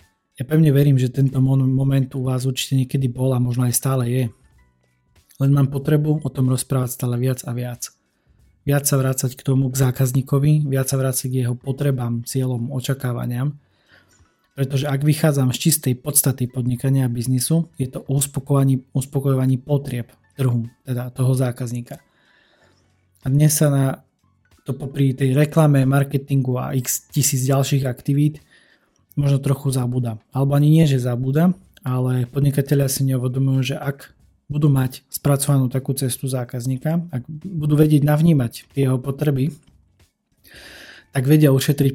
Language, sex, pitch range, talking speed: Slovak, male, 125-140 Hz, 145 wpm